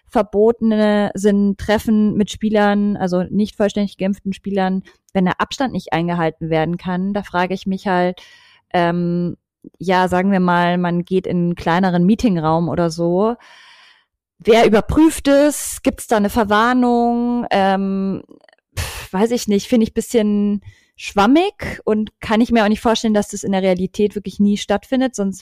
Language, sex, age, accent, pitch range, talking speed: German, female, 30-49, German, 185-220 Hz, 160 wpm